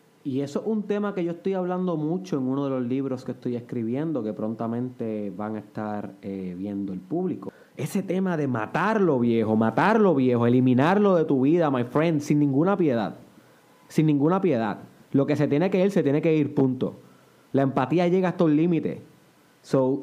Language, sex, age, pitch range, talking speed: Spanish, male, 30-49, 130-180 Hz, 190 wpm